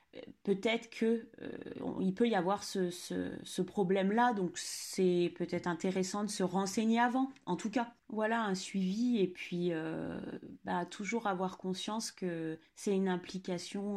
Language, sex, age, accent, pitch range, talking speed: French, female, 30-49, French, 180-220 Hz, 150 wpm